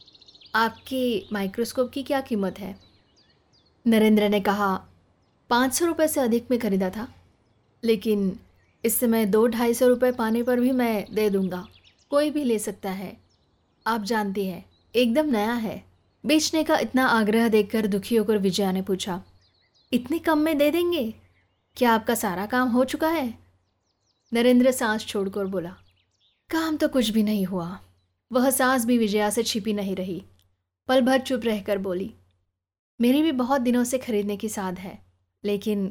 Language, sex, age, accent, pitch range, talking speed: Hindi, female, 20-39, native, 185-255 Hz, 160 wpm